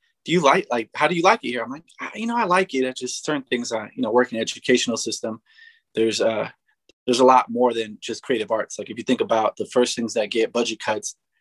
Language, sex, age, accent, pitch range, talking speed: English, male, 20-39, American, 105-125 Hz, 265 wpm